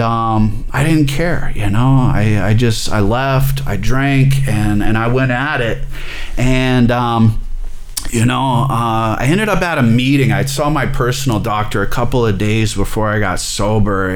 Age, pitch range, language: 30-49, 105-135 Hz, English